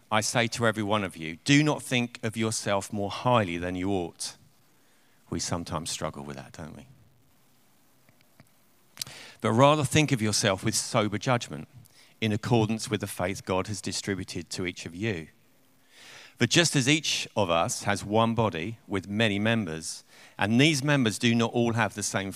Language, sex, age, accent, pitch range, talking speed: English, male, 50-69, British, 95-125 Hz, 175 wpm